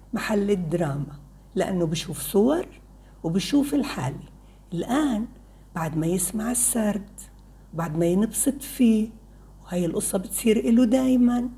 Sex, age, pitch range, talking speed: female, 60-79, 185-275 Hz, 110 wpm